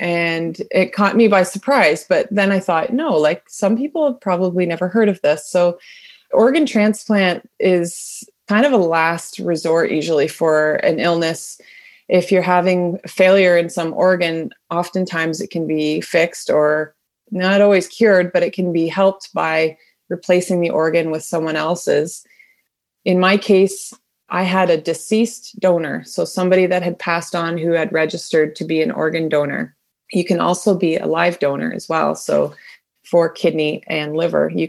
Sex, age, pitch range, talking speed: female, 20-39, 165-195 Hz, 170 wpm